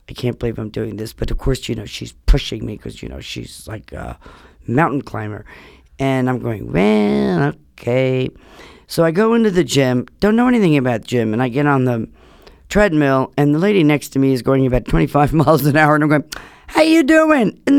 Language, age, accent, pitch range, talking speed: English, 50-69, American, 115-180 Hz, 215 wpm